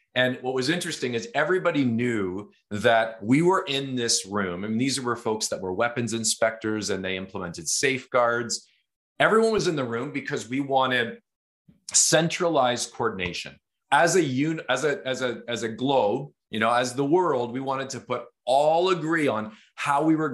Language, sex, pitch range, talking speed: English, male, 110-145 Hz, 175 wpm